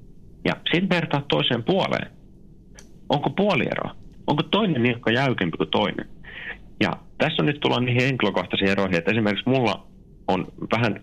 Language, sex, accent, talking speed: Finnish, male, native, 140 wpm